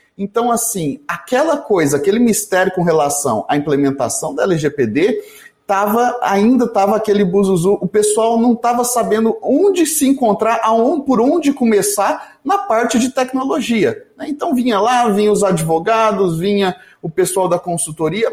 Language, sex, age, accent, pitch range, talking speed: Portuguese, male, 30-49, Brazilian, 175-240 Hz, 145 wpm